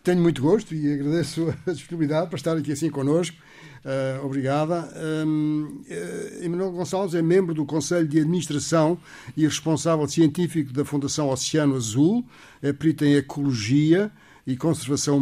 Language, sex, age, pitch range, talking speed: Portuguese, male, 60-79, 135-165 Hz, 130 wpm